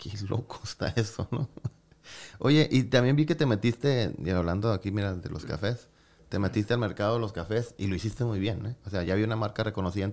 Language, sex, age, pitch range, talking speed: Spanish, male, 30-49, 95-125 Hz, 235 wpm